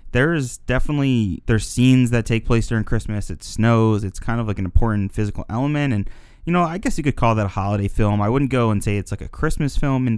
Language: English